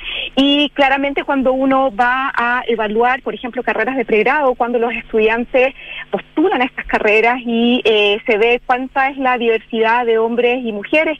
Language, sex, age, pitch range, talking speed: Spanish, female, 40-59, 230-275 Hz, 165 wpm